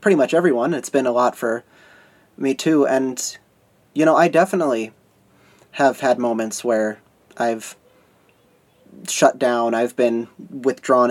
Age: 30-49